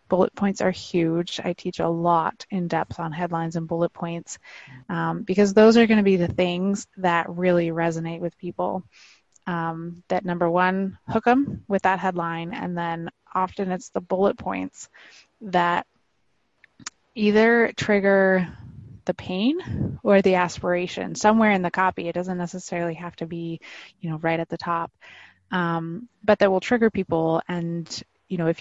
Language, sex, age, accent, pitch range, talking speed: English, female, 20-39, American, 170-190 Hz, 165 wpm